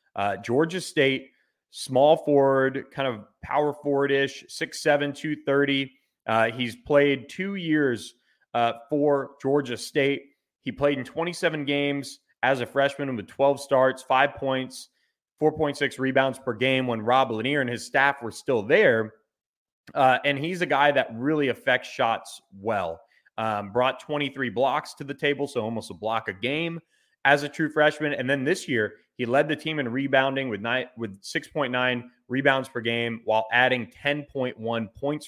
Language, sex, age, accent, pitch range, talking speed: English, male, 30-49, American, 115-145 Hz, 160 wpm